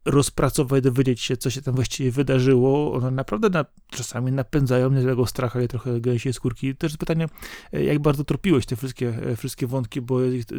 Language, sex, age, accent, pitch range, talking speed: Polish, male, 30-49, native, 120-150 Hz, 170 wpm